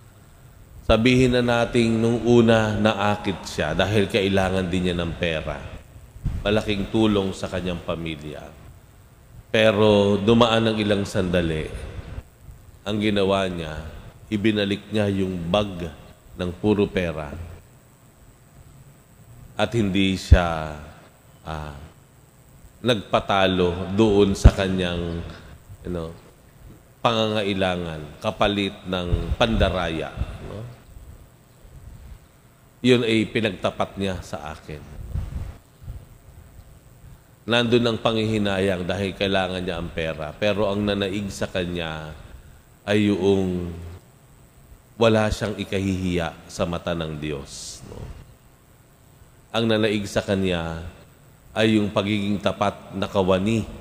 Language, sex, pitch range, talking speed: Filipino, male, 90-110 Hz, 95 wpm